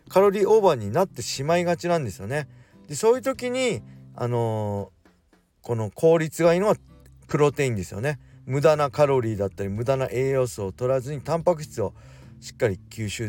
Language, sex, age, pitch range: Japanese, male, 40-59, 115-160 Hz